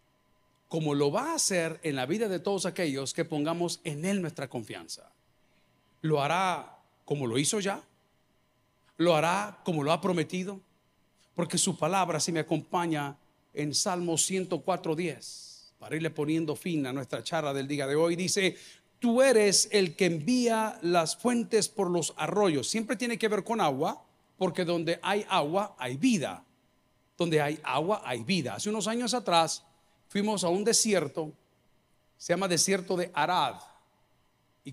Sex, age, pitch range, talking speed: male, 50-69, 160-210 Hz, 160 wpm